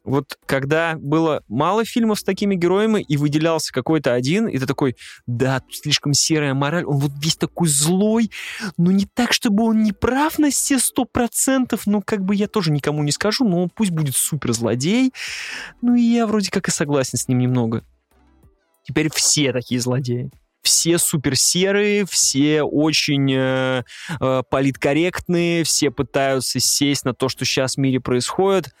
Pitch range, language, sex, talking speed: 135-210 Hz, Russian, male, 160 wpm